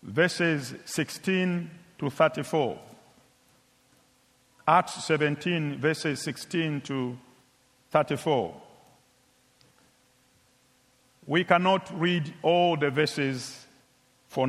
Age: 50-69